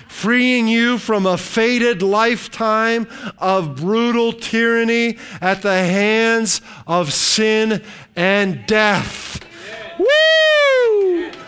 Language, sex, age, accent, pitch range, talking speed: English, male, 40-59, American, 185-225 Hz, 90 wpm